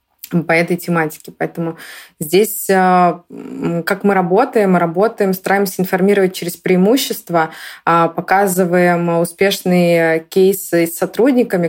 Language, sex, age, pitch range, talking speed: Russian, female, 20-39, 165-190 Hz, 90 wpm